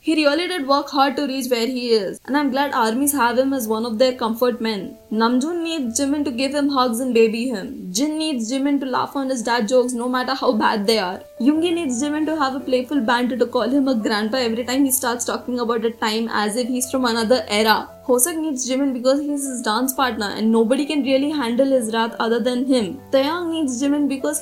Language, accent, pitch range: English, Indian, 235-285 Hz